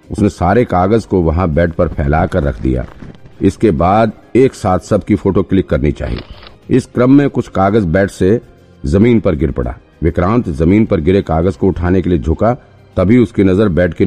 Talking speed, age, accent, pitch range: 200 wpm, 50-69, native, 80-105 Hz